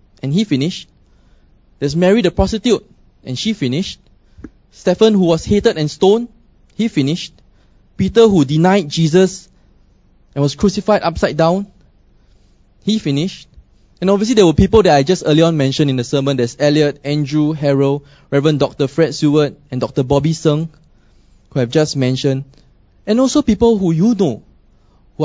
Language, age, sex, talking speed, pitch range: English, 20-39, male, 160 wpm, 140-190 Hz